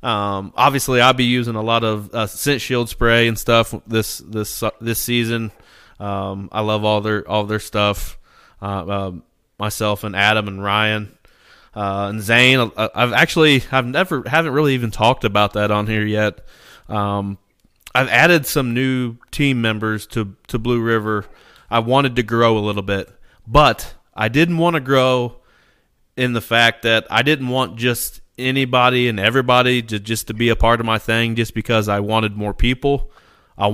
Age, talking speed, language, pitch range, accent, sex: 20-39, 180 wpm, English, 105-125 Hz, American, male